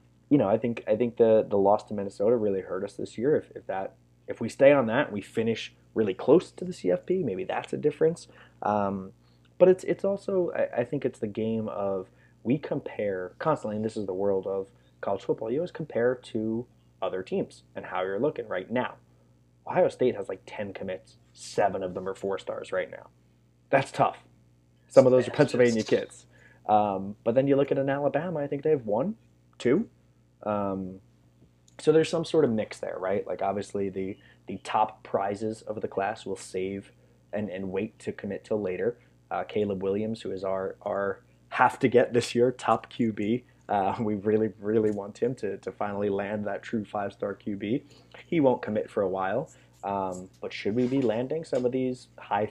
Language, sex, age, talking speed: English, male, 20-39, 200 wpm